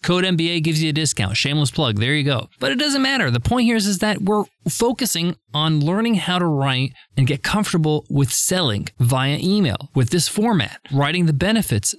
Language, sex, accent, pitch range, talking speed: English, male, American, 150-205 Hz, 205 wpm